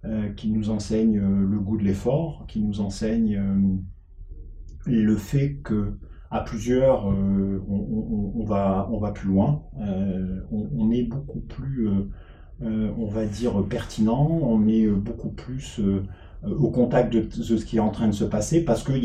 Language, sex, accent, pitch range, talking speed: French, male, French, 100-125 Hz, 180 wpm